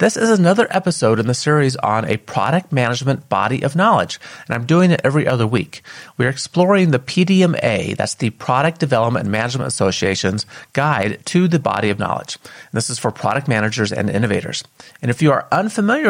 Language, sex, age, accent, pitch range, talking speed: English, male, 30-49, American, 115-155 Hz, 185 wpm